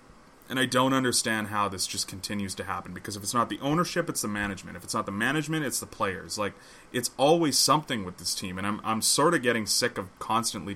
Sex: male